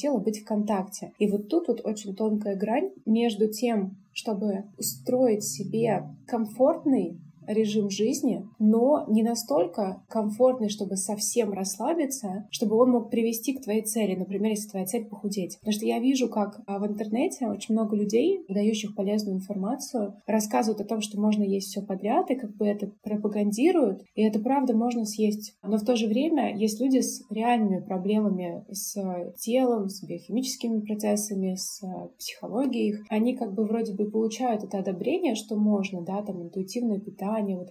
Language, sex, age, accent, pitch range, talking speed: Russian, female, 20-39, native, 200-235 Hz, 160 wpm